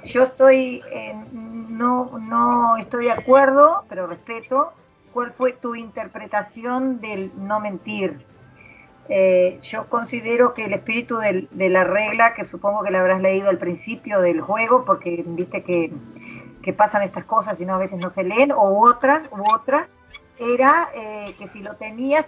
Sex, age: female, 40-59